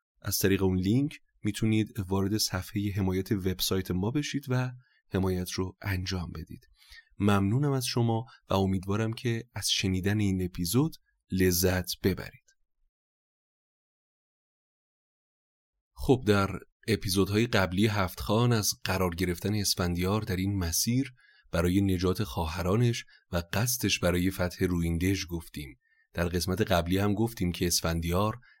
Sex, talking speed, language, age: male, 120 wpm, Persian, 30-49